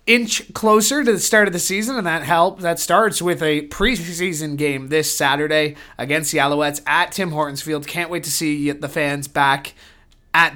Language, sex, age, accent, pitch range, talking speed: English, male, 20-39, American, 145-190 Hz, 190 wpm